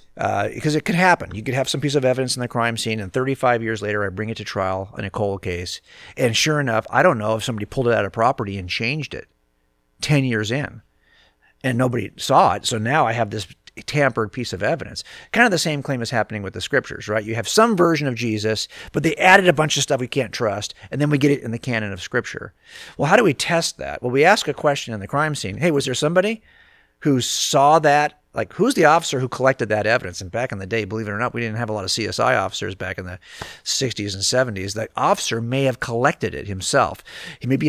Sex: male